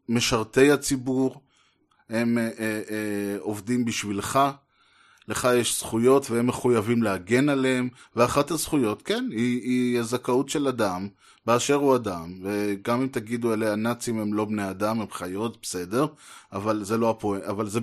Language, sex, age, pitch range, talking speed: Hebrew, male, 20-39, 105-140 Hz, 145 wpm